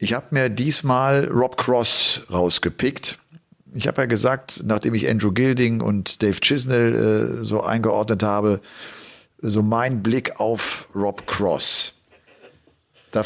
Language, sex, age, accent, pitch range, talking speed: German, male, 50-69, German, 110-135 Hz, 130 wpm